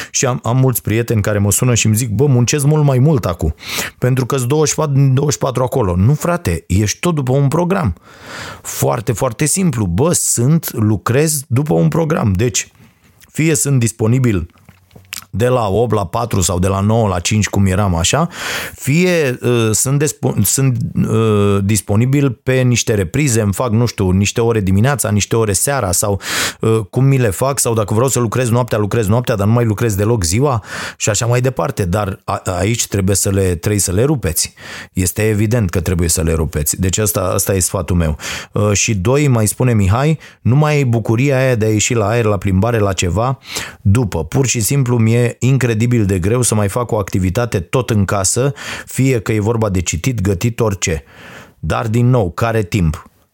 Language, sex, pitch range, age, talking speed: Romanian, male, 100-130 Hz, 30-49, 195 wpm